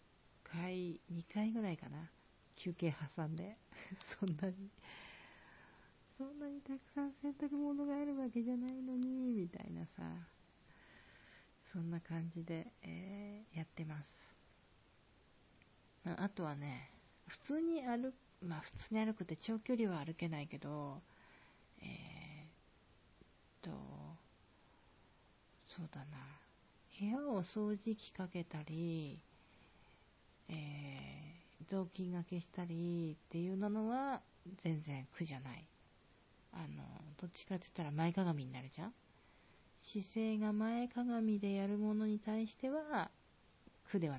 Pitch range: 155-215 Hz